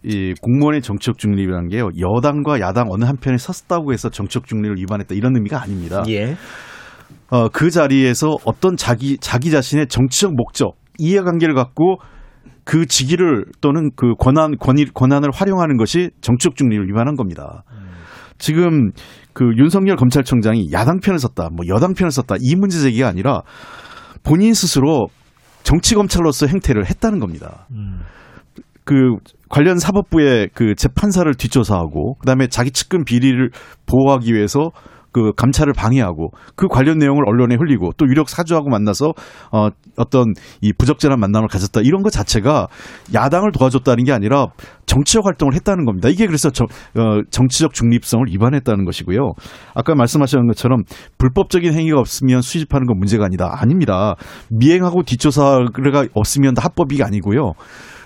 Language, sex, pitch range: Korean, male, 115-155 Hz